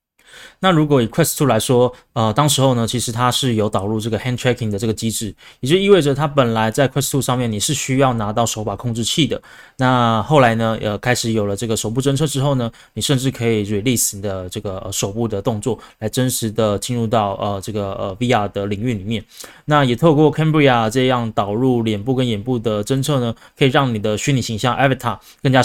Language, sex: Chinese, male